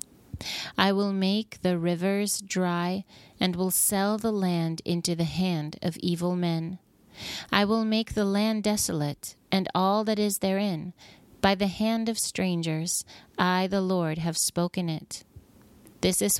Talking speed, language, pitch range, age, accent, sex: 150 wpm, English, 170-200 Hz, 30-49, American, female